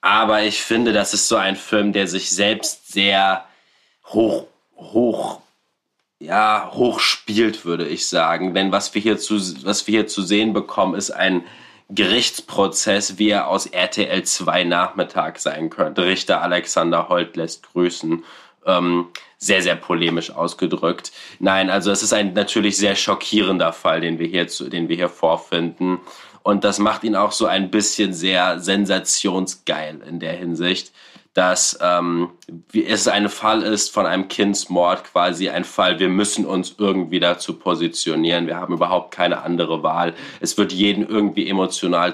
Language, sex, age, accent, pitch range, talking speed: German, male, 20-39, German, 90-105 Hz, 145 wpm